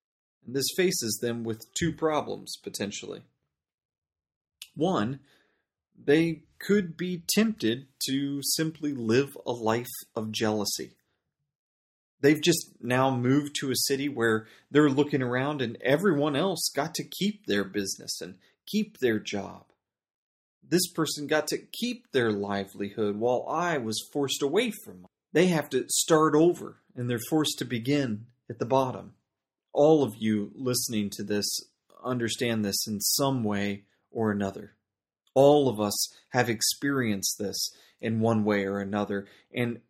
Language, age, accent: English, 30-49, American